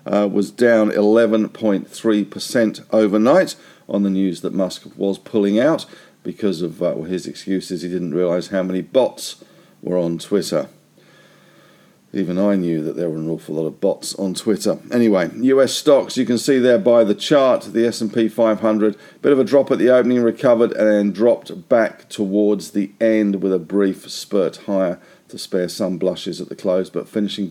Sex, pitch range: male, 100-120 Hz